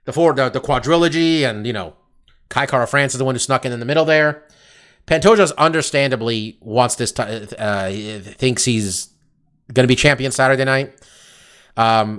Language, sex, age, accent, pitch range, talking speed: English, male, 30-49, American, 125-160 Hz, 170 wpm